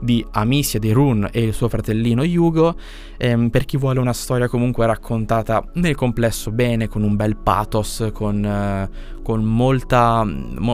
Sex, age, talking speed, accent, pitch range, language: male, 20-39, 160 wpm, native, 105-125 Hz, Italian